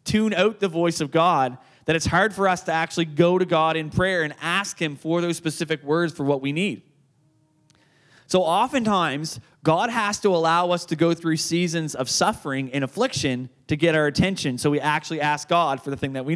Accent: American